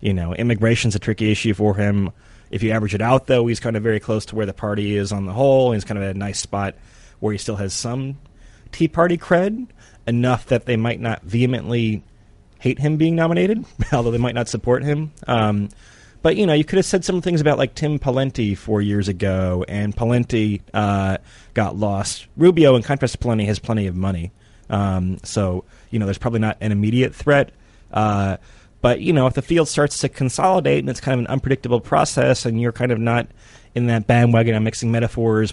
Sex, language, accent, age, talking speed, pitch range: male, English, American, 30-49, 215 wpm, 105-125 Hz